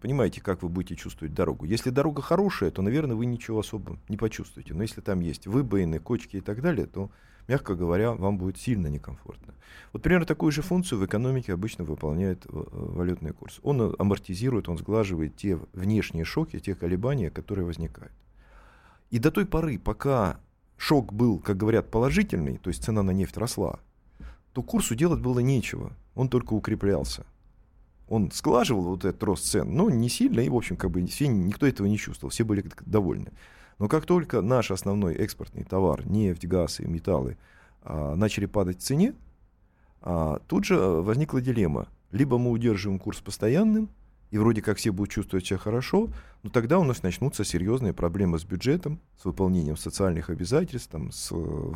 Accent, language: native, Russian